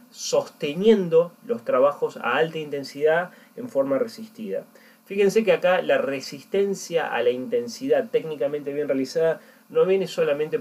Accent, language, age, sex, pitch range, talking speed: Argentinian, Spanish, 30-49, male, 150-245 Hz, 130 wpm